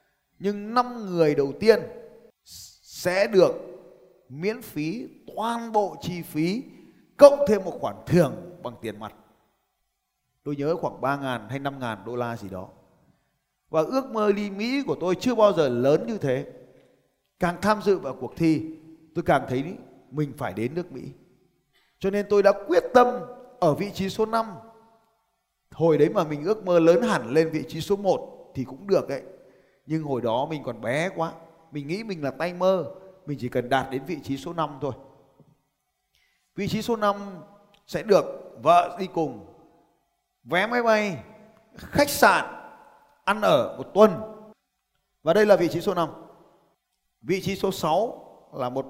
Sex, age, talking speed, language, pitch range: male, 20-39, 175 wpm, Vietnamese, 135-205 Hz